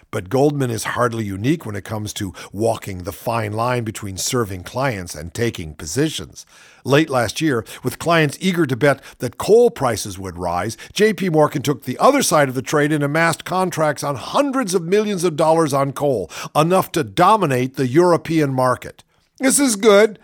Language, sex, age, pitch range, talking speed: English, male, 50-69, 125-185 Hz, 180 wpm